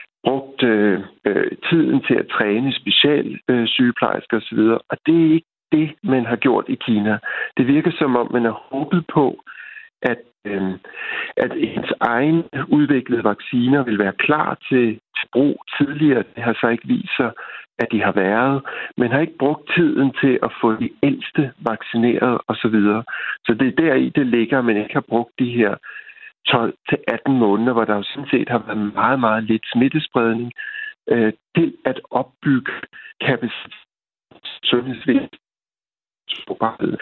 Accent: native